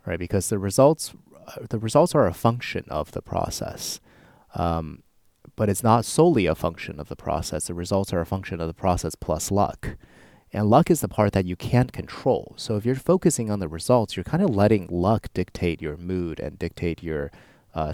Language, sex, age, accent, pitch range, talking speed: English, male, 30-49, American, 85-105 Hz, 200 wpm